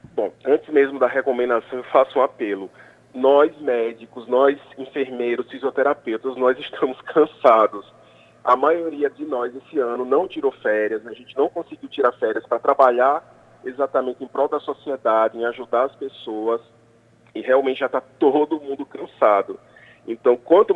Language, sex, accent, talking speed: Portuguese, male, Brazilian, 150 wpm